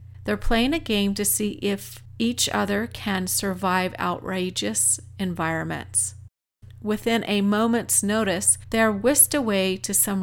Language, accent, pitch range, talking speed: English, American, 165-220 Hz, 130 wpm